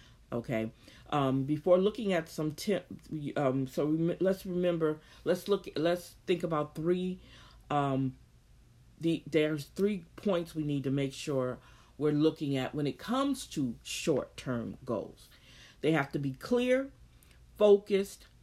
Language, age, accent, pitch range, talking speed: English, 50-69, American, 145-195 Hz, 135 wpm